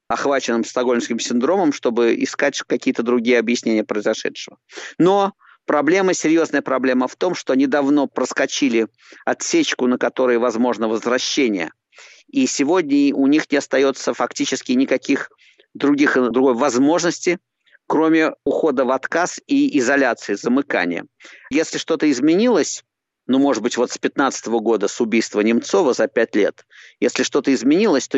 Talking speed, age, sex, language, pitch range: 130 wpm, 50-69, male, Russian, 125-170 Hz